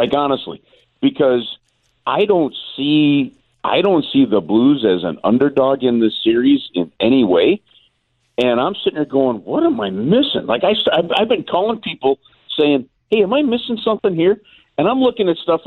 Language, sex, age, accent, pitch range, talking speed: English, male, 50-69, American, 120-155 Hz, 180 wpm